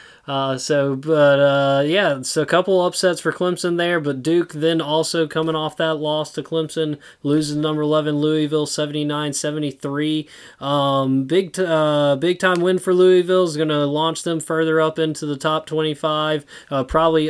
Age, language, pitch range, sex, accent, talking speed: 20-39, English, 140-160 Hz, male, American, 175 wpm